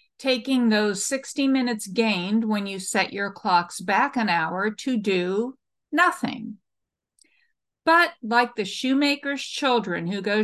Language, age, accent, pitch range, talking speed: English, 50-69, American, 200-265 Hz, 130 wpm